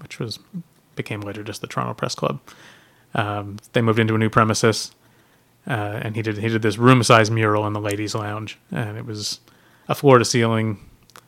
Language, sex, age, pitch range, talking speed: English, male, 30-49, 105-120 Hz, 180 wpm